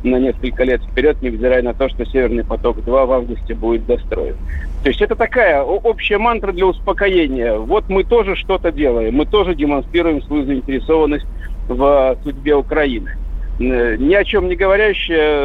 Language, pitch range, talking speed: Russian, 135-205 Hz, 155 wpm